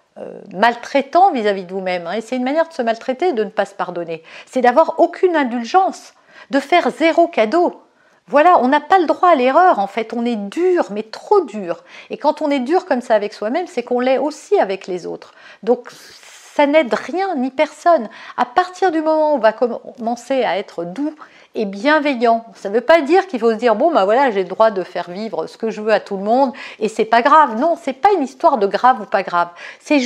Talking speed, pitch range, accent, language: 240 wpm, 220-330 Hz, French, French